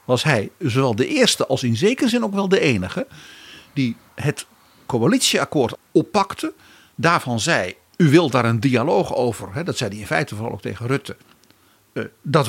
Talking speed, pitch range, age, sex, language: 170 wpm, 120-180 Hz, 50-69, male, Dutch